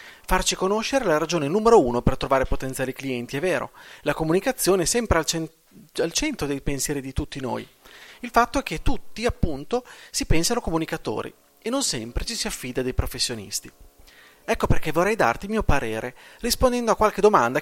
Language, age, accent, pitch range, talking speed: Italian, 30-49, native, 135-195 Hz, 175 wpm